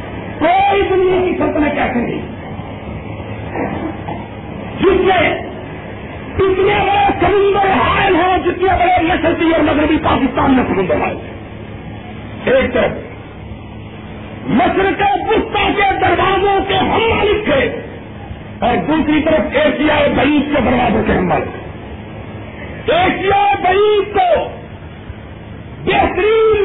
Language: Urdu